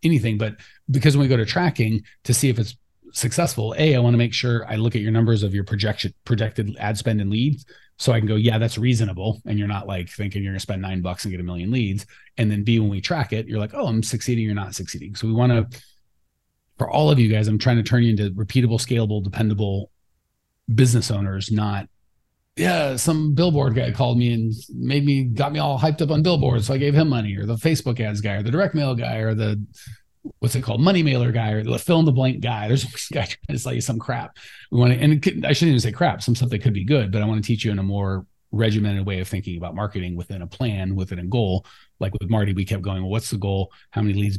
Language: English